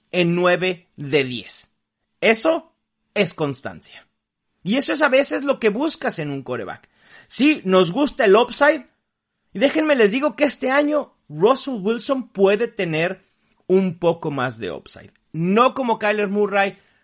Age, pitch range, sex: 40-59, 160-230 Hz, male